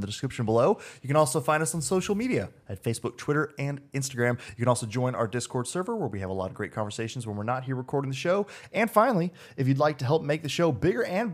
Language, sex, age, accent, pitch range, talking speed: English, male, 20-39, American, 120-165 Hz, 265 wpm